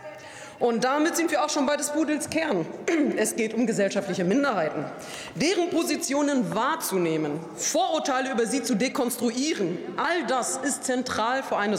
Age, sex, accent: 40-59, female, German